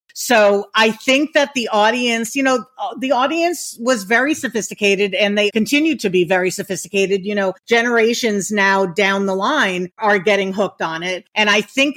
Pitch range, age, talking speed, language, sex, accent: 195-230 Hz, 50-69, 175 wpm, English, female, American